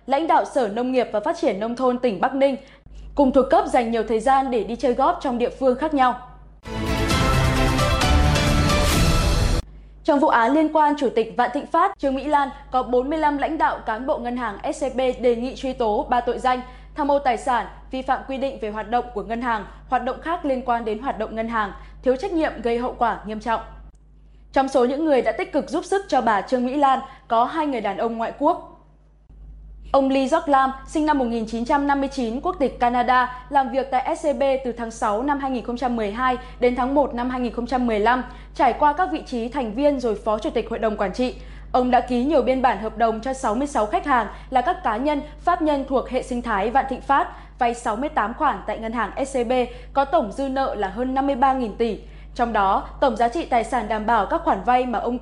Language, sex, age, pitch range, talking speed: Vietnamese, female, 20-39, 230-275 Hz, 220 wpm